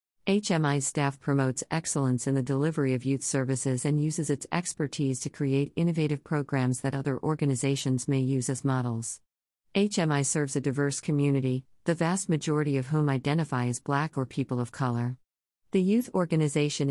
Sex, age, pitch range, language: female, 50-69, 130-155 Hz, English